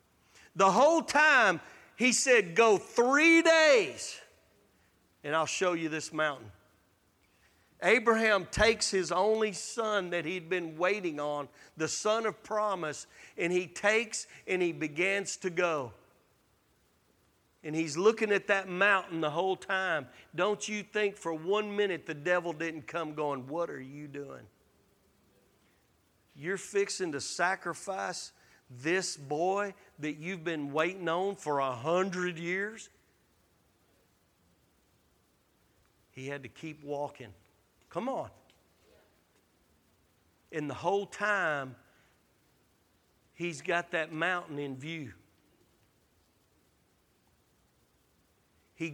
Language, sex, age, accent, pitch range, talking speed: English, male, 40-59, American, 135-195 Hz, 115 wpm